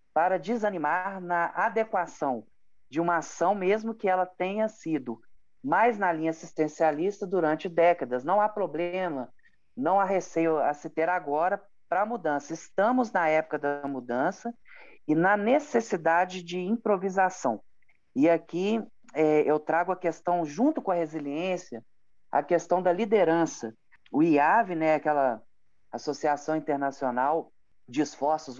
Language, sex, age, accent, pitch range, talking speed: Portuguese, male, 40-59, Brazilian, 155-200 Hz, 135 wpm